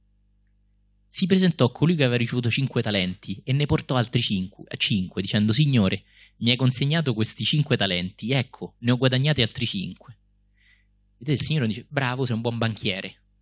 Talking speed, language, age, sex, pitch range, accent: 170 wpm, Italian, 30-49, male, 100-125 Hz, native